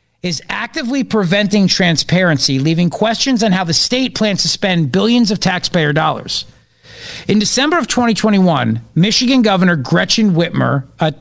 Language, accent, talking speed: English, American, 140 wpm